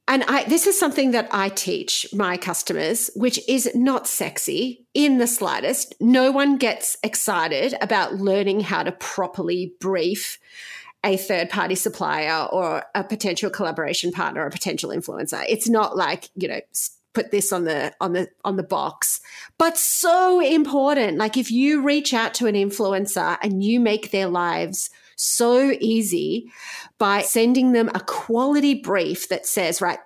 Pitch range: 205-280 Hz